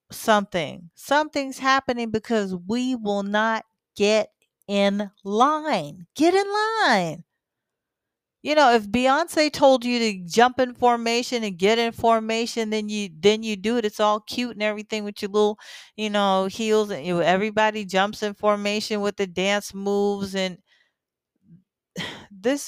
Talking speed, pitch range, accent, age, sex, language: 145 wpm, 185-240 Hz, American, 40-59, female, English